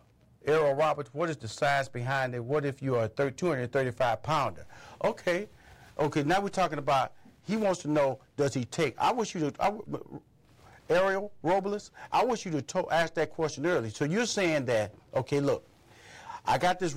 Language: English